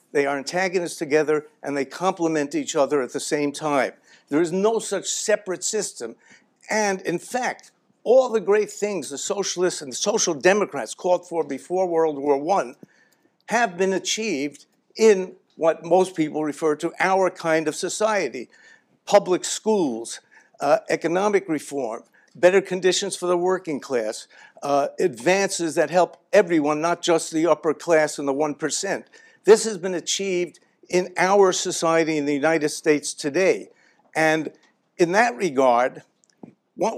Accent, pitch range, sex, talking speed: American, 145-185 Hz, male, 150 wpm